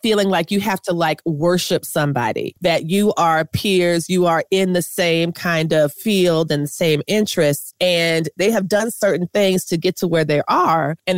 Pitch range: 165-200 Hz